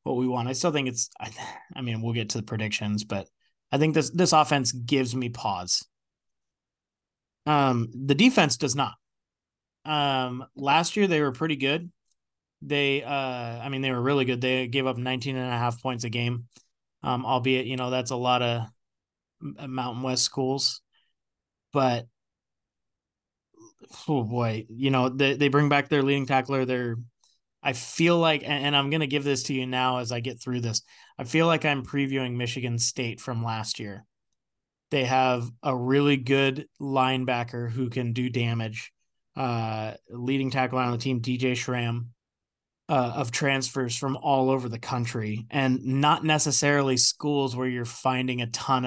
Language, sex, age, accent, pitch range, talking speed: English, male, 20-39, American, 120-140 Hz, 175 wpm